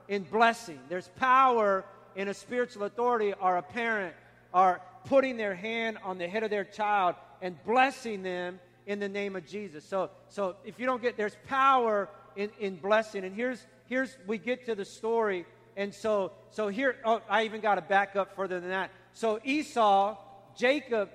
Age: 40-59